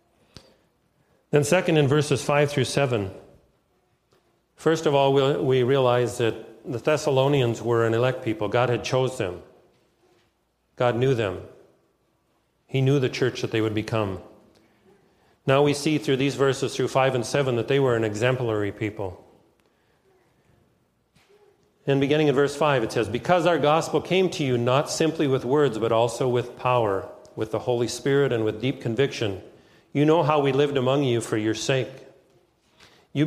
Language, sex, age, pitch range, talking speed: English, male, 40-59, 115-140 Hz, 165 wpm